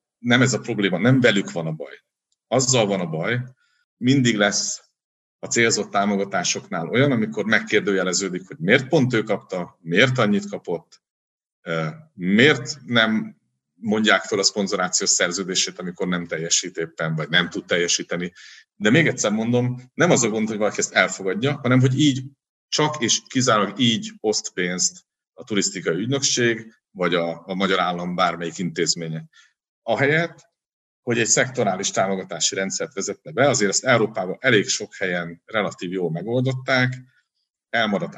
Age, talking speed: 50-69, 145 wpm